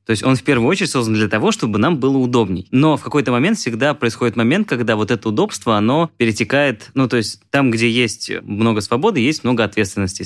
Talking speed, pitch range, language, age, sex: 215 wpm, 105-130 Hz, Russian, 20-39, male